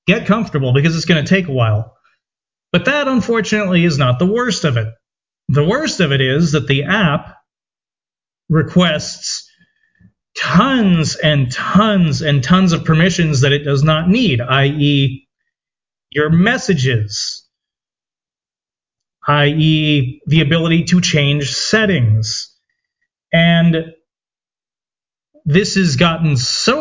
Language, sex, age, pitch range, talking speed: English, male, 30-49, 145-210 Hz, 120 wpm